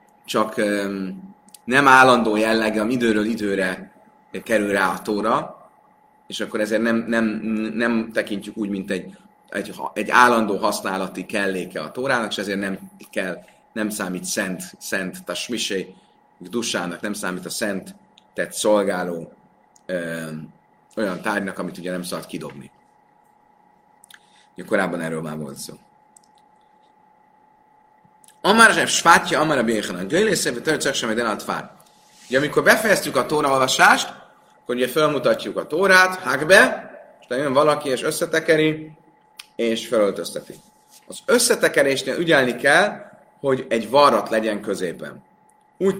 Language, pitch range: Hungarian, 105-155 Hz